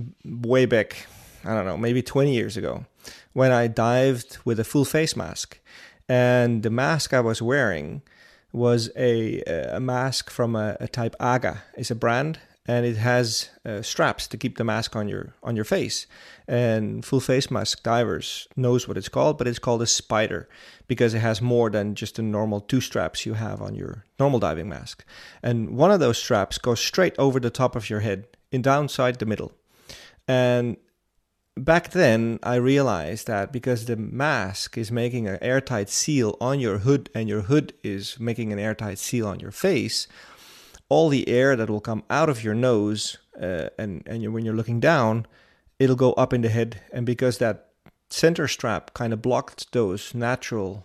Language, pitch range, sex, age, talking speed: English, 110-125 Hz, male, 30-49, 185 wpm